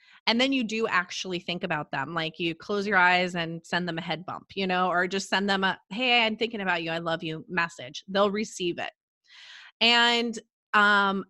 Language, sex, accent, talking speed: English, female, American, 210 wpm